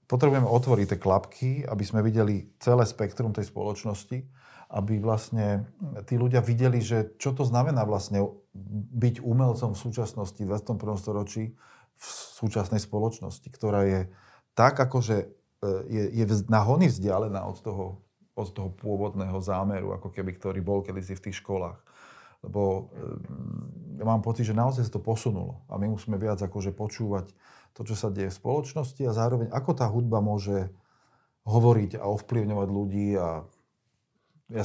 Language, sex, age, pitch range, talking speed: Slovak, male, 40-59, 100-120 Hz, 150 wpm